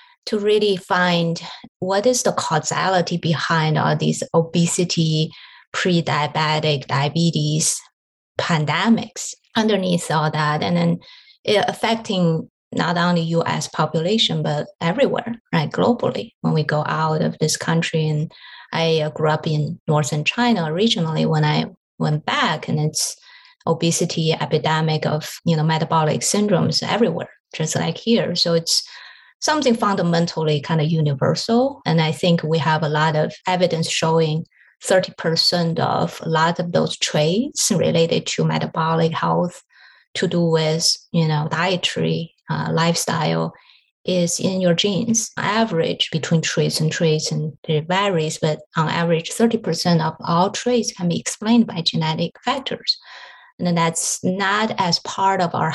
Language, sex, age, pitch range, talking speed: English, female, 20-39, 155-185 Hz, 135 wpm